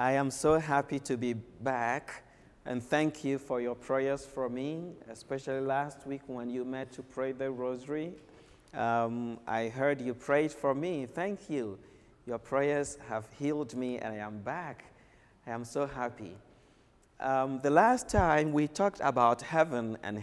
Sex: male